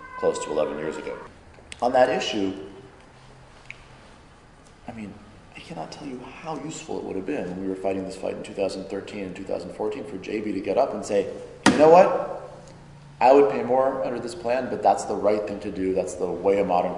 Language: English